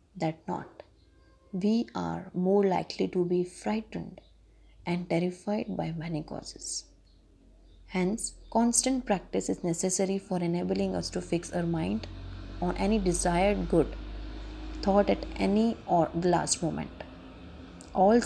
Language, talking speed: Hindi, 125 wpm